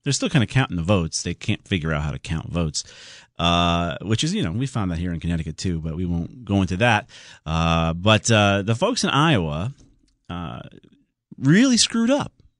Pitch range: 85-130 Hz